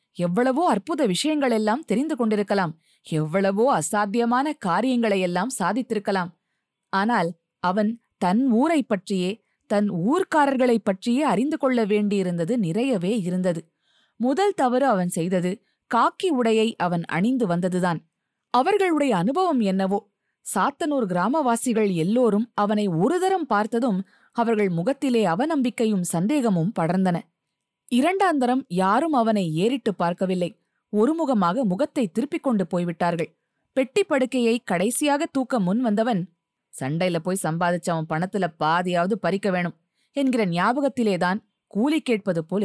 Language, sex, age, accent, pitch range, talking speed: Tamil, female, 20-39, native, 180-255 Hz, 105 wpm